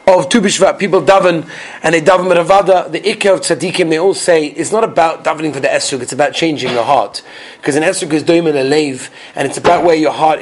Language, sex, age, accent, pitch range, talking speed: English, male, 30-49, British, 160-210 Hz, 240 wpm